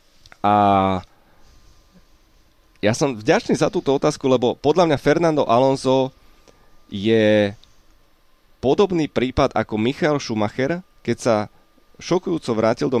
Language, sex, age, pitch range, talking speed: Slovak, male, 30-49, 110-140 Hz, 105 wpm